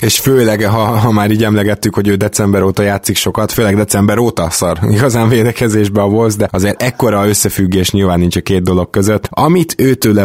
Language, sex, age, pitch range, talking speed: Hungarian, male, 20-39, 95-115 Hz, 185 wpm